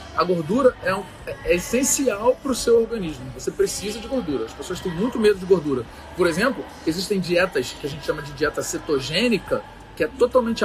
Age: 40-59